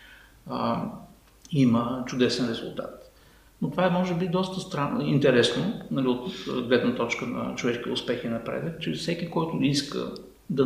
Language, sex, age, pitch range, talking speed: Bulgarian, male, 50-69, 120-175 Hz, 135 wpm